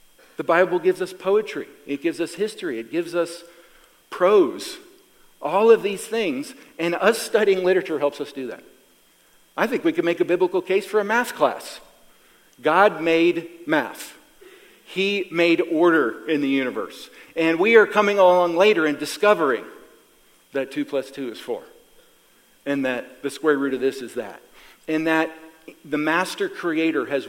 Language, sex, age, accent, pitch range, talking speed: English, male, 50-69, American, 145-195 Hz, 165 wpm